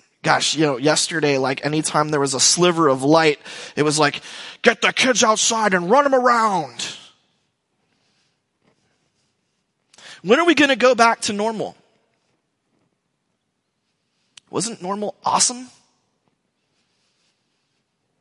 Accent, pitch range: American, 150-205 Hz